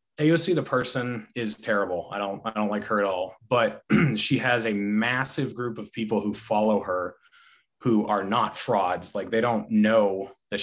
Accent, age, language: American, 30-49, English